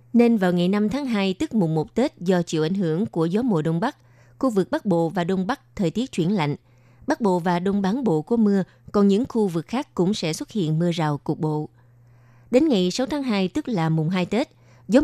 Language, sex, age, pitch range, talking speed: Vietnamese, female, 20-39, 155-215 Hz, 245 wpm